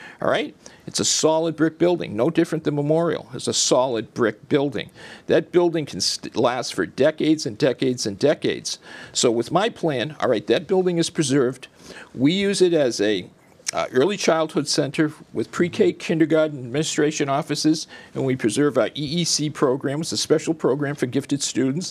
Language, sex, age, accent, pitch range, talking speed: English, male, 50-69, American, 150-180 Hz, 175 wpm